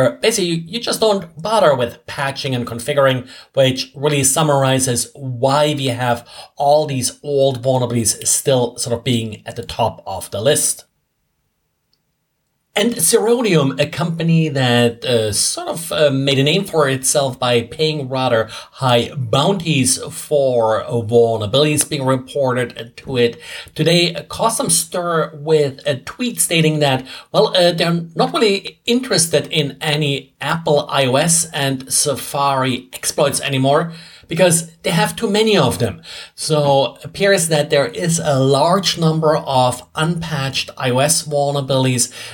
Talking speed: 135 wpm